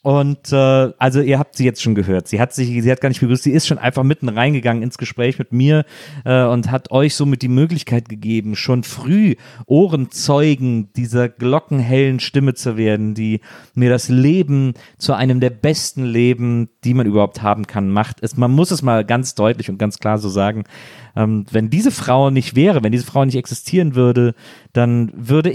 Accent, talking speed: German, 195 wpm